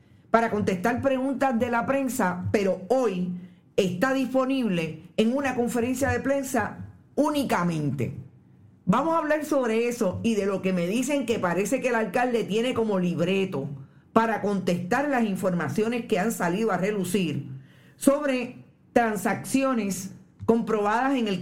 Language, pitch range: Spanish, 180-240 Hz